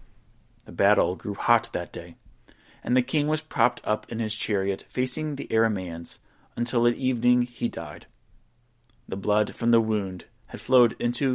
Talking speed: 165 wpm